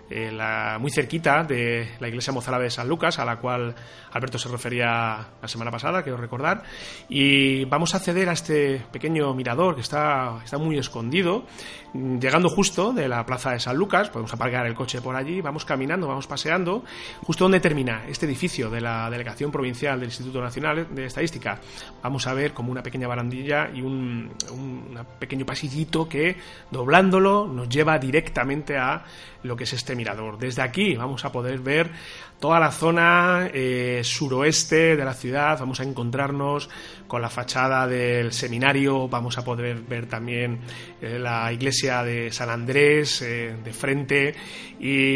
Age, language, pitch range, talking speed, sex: 30-49, Spanish, 120-150 Hz, 165 wpm, male